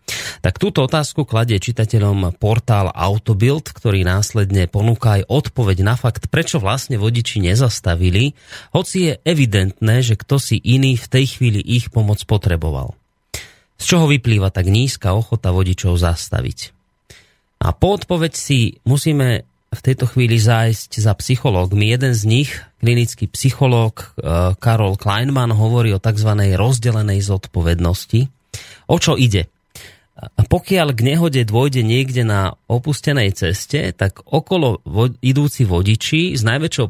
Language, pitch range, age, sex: Slovak, 100-130 Hz, 30-49, male